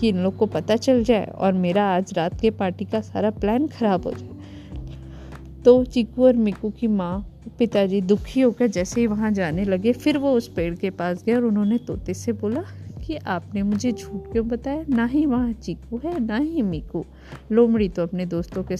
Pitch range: 185-235 Hz